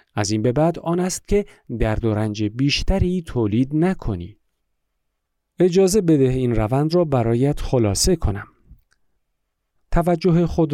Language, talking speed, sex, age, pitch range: Persian, 125 wpm, male, 50-69, 110-165 Hz